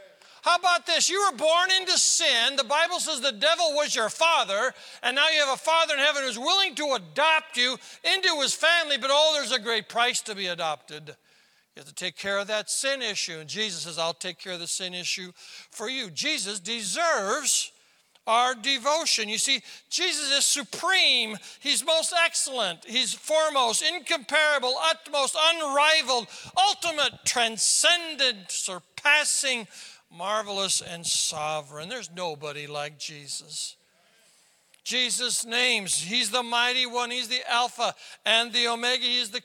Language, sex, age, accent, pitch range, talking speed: English, male, 60-79, American, 185-280 Hz, 155 wpm